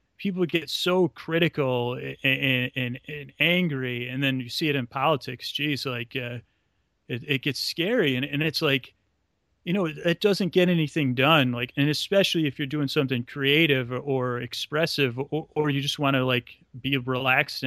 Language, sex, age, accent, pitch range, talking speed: English, male, 30-49, American, 125-150 Hz, 185 wpm